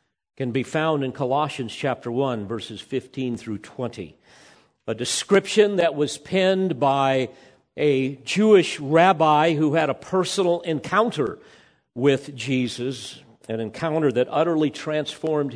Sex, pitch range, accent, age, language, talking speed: male, 125-165 Hz, American, 50-69, English, 125 wpm